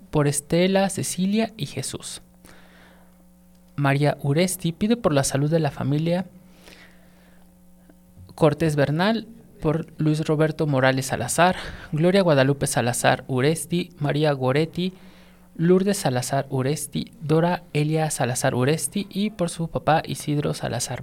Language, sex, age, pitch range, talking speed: Spanish, male, 30-49, 130-170 Hz, 115 wpm